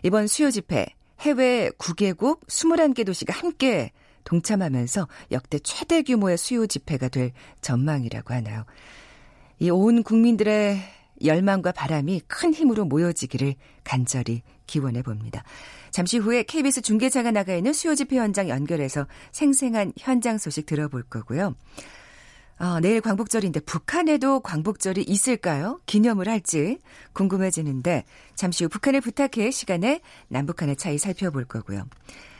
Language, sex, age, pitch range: Korean, female, 40-59, 150-240 Hz